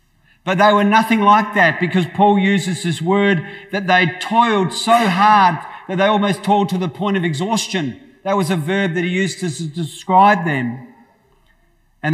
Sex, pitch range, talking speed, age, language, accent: male, 150-190 Hz, 180 wpm, 40-59, English, Australian